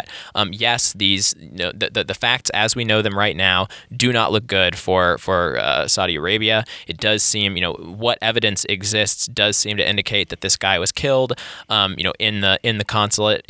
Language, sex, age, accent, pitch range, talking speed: English, male, 20-39, American, 100-120 Hz, 220 wpm